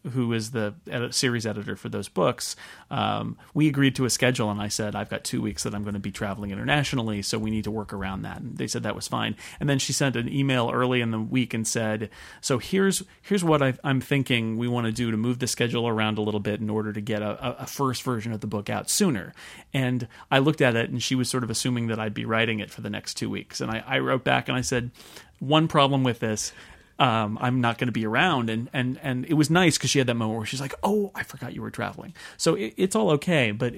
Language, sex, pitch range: English, male, 110-130 Hz